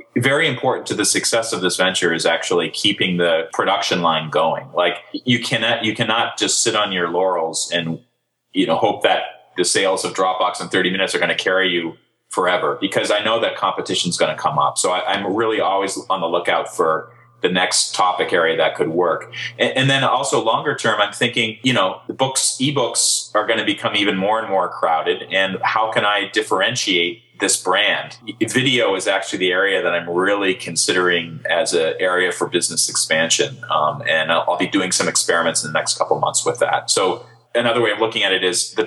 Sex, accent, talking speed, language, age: male, American, 210 wpm, English, 30-49